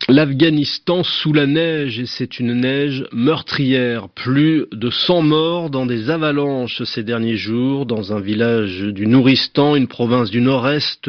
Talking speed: 150 wpm